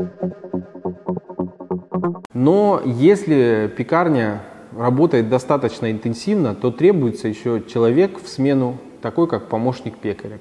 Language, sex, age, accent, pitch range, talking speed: Russian, male, 20-39, native, 110-140 Hz, 90 wpm